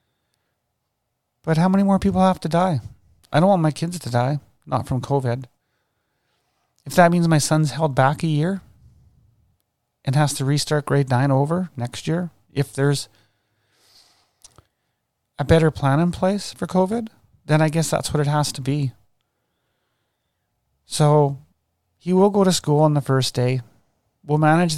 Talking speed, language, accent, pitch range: 160 wpm, English, American, 130-160 Hz